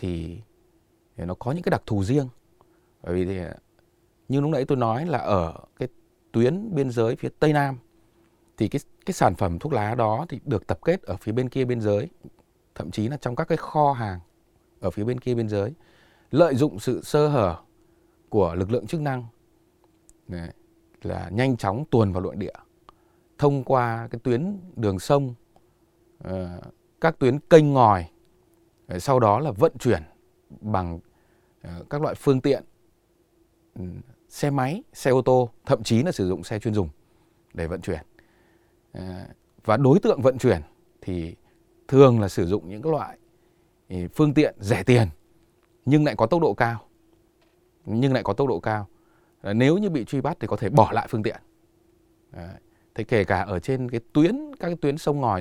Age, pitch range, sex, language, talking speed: 20-39, 100-145 Hz, male, Vietnamese, 175 wpm